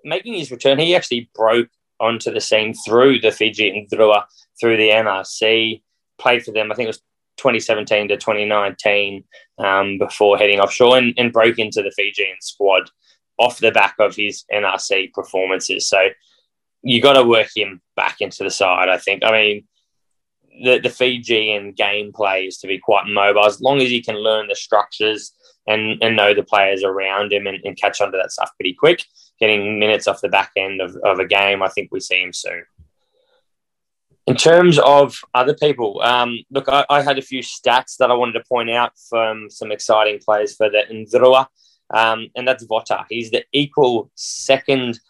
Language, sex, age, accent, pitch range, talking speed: English, male, 10-29, Australian, 105-130 Hz, 190 wpm